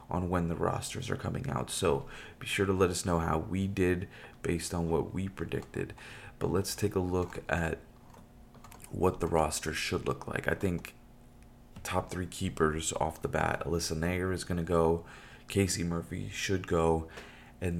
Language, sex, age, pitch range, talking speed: English, male, 30-49, 80-95 Hz, 180 wpm